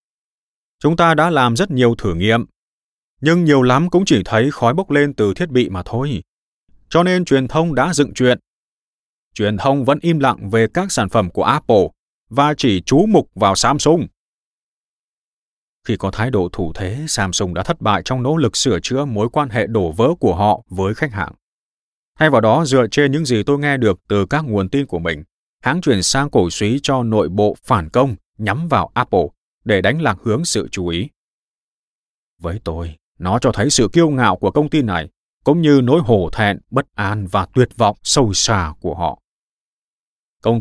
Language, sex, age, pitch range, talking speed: Vietnamese, male, 20-39, 100-140 Hz, 200 wpm